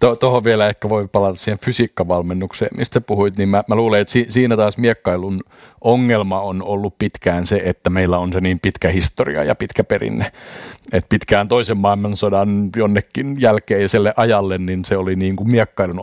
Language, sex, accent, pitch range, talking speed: Finnish, male, native, 95-110 Hz, 170 wpm